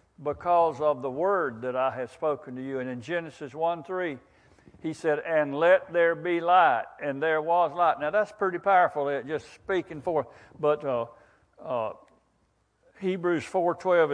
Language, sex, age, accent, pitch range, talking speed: English, male, 60-79, American, 130-160 Hz, 155 wpm